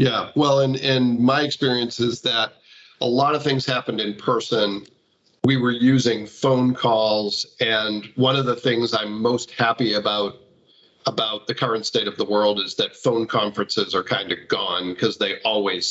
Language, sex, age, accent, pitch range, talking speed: English, male, 50-69, American, 110-130 Hz, 180 wpm